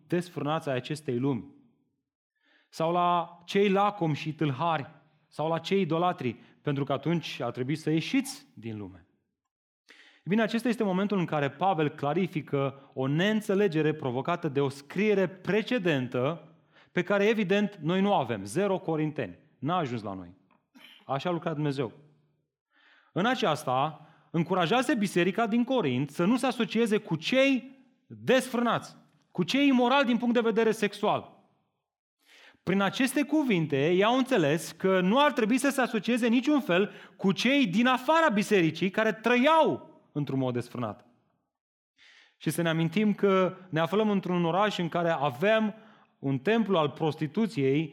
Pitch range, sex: 150-215 Hz, male